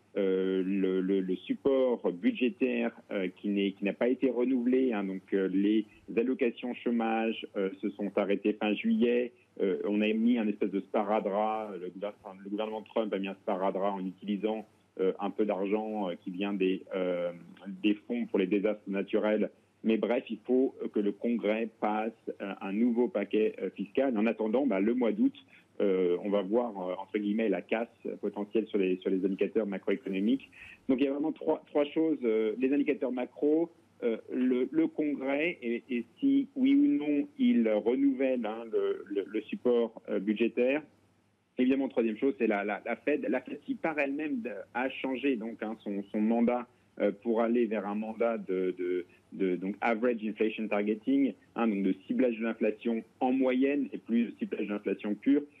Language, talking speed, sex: French, 190 wpm, male